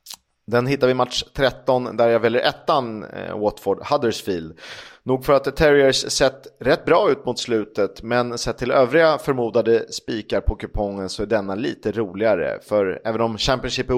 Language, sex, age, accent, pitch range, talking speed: Swedish, male, 30-49, native, 110-135 Hz, 180 wpm